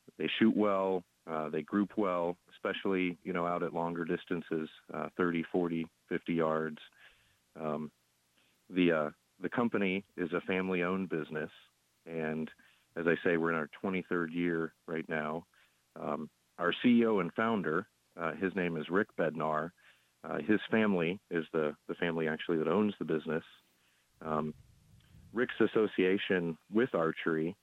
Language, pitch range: English, 80-90 Hz